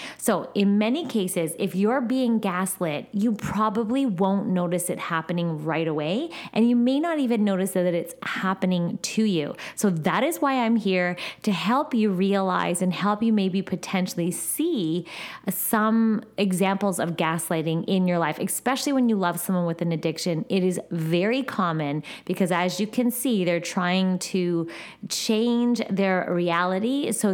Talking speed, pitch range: 160 wpm, 170-220 Hz